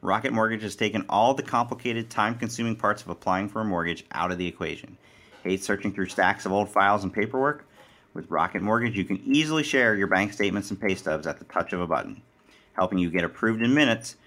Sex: male